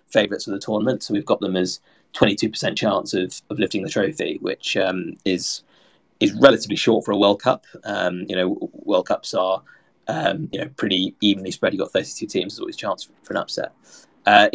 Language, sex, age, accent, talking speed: English, male, 20-39, British, 210 wpm